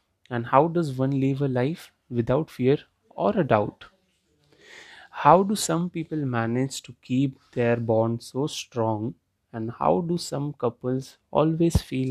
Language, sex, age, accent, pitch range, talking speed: English, male, 30-49, Indian, 115-135 Hz, 150 wpm